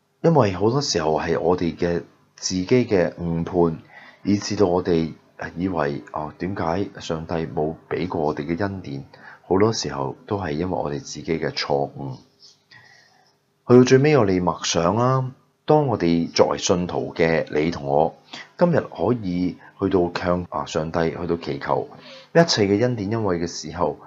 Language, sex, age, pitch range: Chinese, male, 30-49, 80-100 Hz